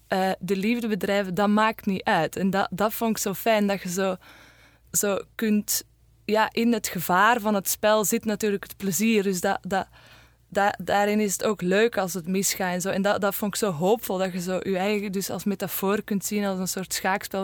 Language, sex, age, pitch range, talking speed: Dutch, female, 20-39, 180-205 Hz, 225 wpm